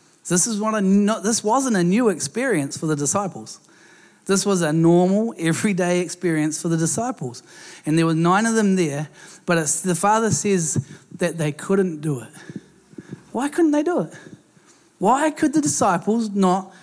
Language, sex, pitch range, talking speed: English, male, 160-200 Hz, 175 wpm